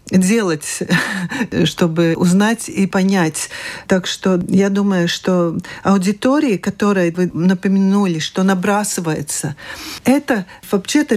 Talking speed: 95 wpm